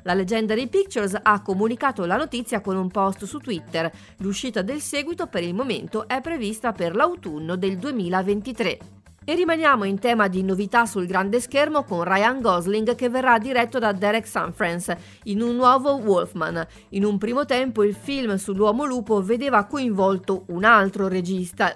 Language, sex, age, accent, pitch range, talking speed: Italian, female, 40-59, native, 180-230 Hz, 165 wpm